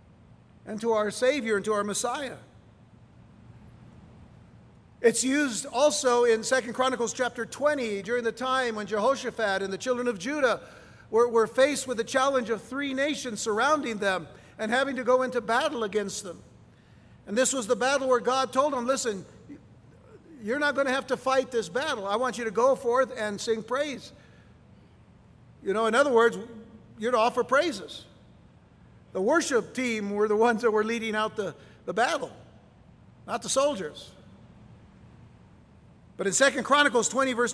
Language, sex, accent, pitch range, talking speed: English, male, American, 215-265 Hz, 165 wpm